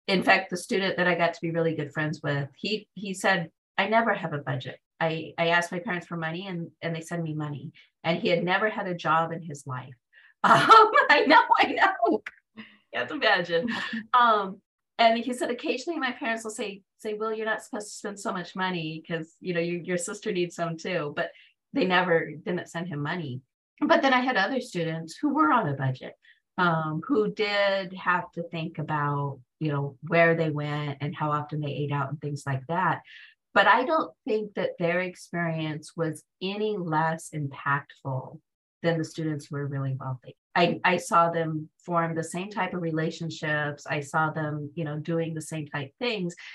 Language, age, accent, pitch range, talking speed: English, 40-59, American, 155-205 Hz, 205 wpm